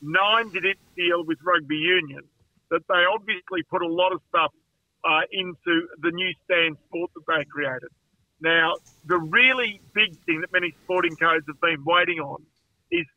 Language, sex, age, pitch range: English, male, 50-69, 165-190 Hz